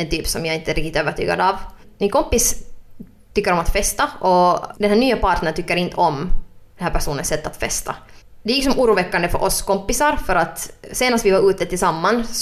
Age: 20-39